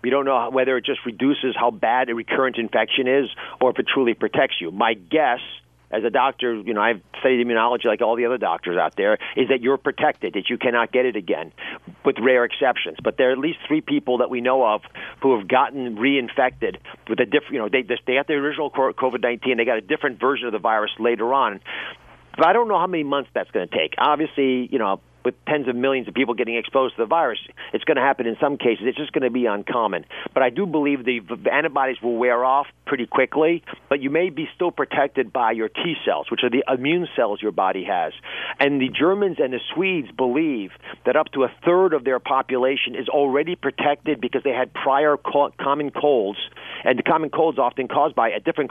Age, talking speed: 50-69, 230 wpm